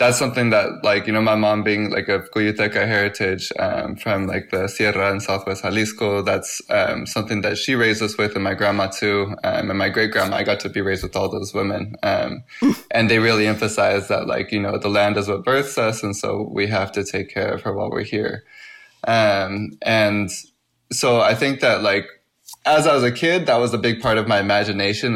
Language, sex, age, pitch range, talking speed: English, male, 20-39, 100-115 Hz, 225 wpm